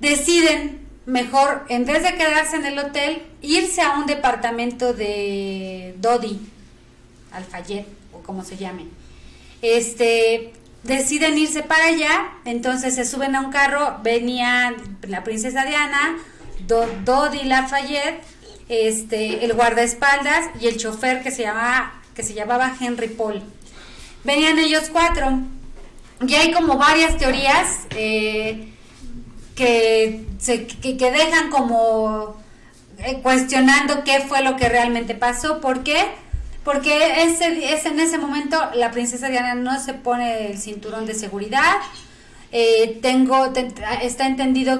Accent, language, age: Mexican, Spanish, 30-49